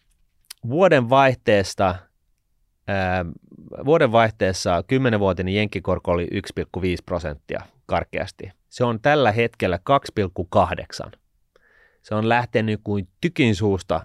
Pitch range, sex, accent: 85-105 Hz, male, native